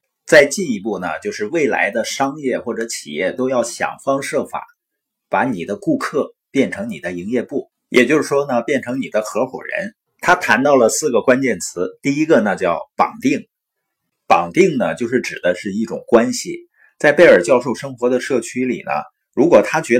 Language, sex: Chinese, male